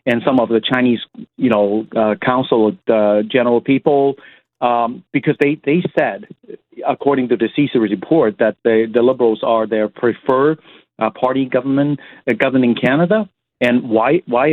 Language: English